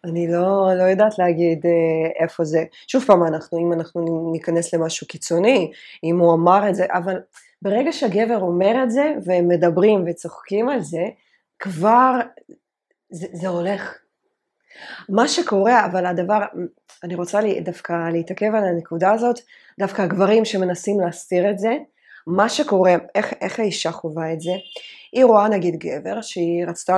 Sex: female